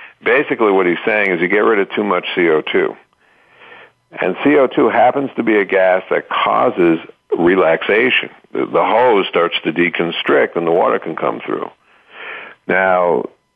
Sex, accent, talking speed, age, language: male, American, 155 wpm, 60-79, English